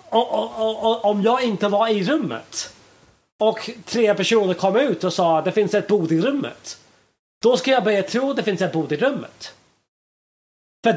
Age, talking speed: 30-49, 195 wpm